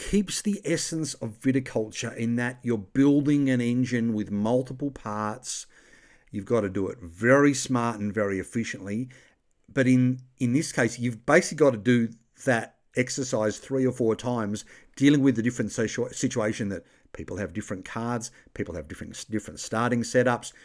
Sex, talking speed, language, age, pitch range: male, 165 wpm, English, 50-69, 115-140 Hz